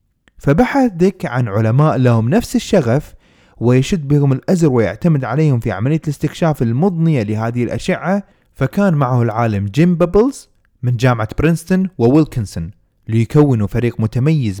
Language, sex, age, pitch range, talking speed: Arabic, male, 30-49, 110-165 Hz, 125 wpm